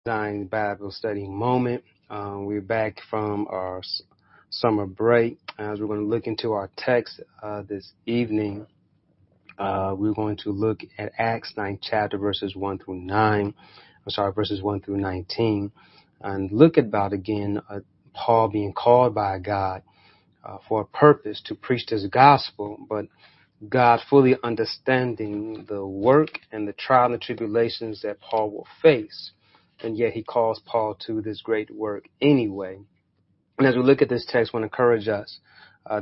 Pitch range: 100-115 Hz